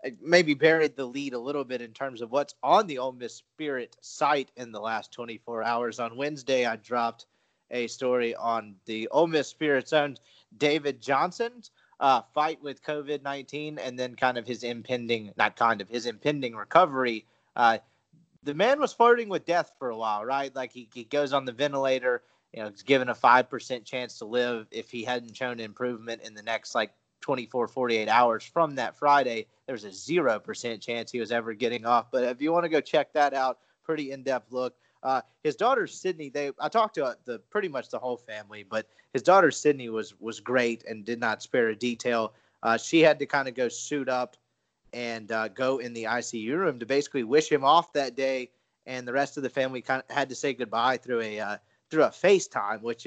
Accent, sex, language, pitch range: American, male, English, 115-145 Hz